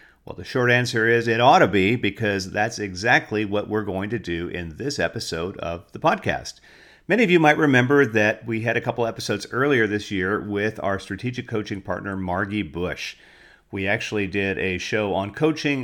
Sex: male